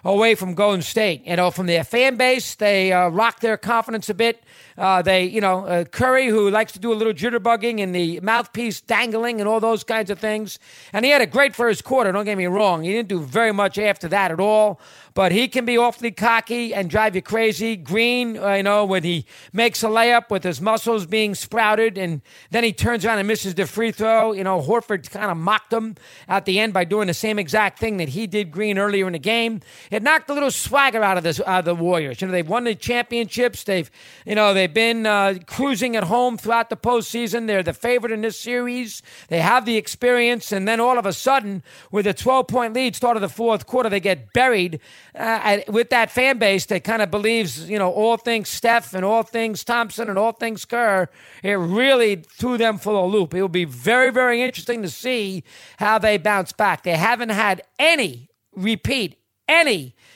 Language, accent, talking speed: English, American, 220 wpm